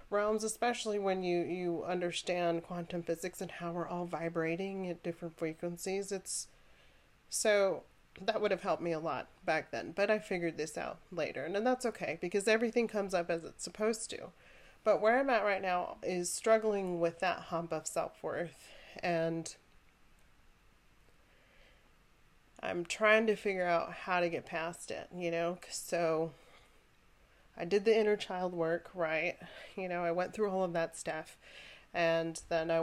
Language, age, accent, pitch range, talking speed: English, 30-49, American, 170-205 Hz, 165 wpm